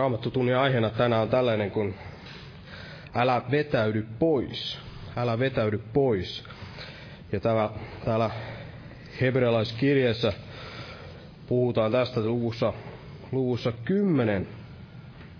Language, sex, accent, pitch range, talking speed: Finnish, male, native, 110-135 Hz, 80 wpm